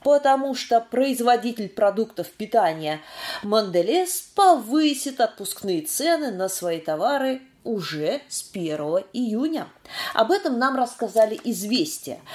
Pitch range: 200-290 Hz